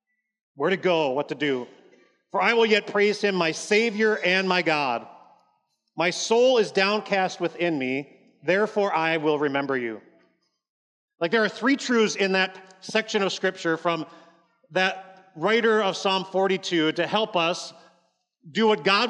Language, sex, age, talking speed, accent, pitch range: English, male, 40-59, 155 wpm, American, 165-215 Hz